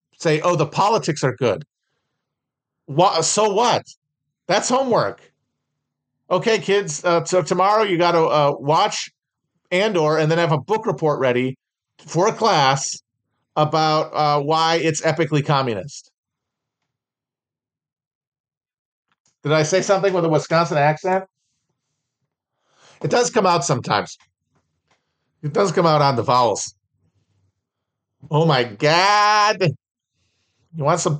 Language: English